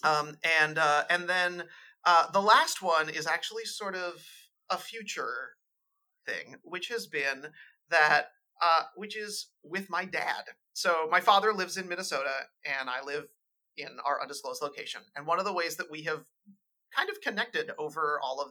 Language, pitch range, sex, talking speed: English, 150-220 Hz, male, 170 wpm